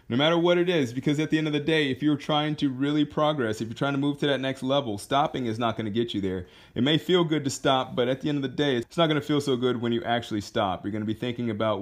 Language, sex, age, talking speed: English, male, 30-49, 330 wpm